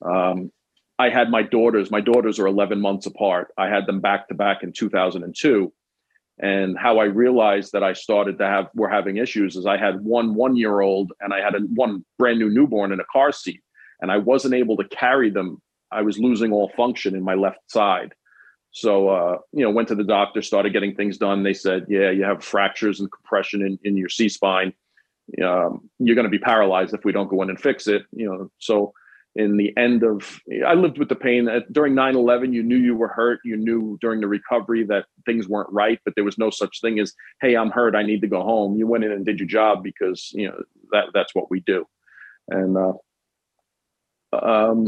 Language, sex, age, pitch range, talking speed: English, male, 40-59, 95-115 Hz, 220 wpm